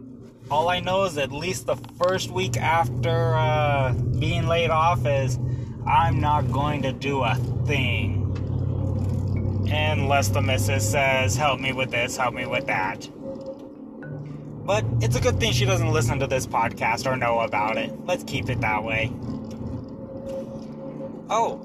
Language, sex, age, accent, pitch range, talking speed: English, male, 20-39, American, 115-135 Hz, 150 wpm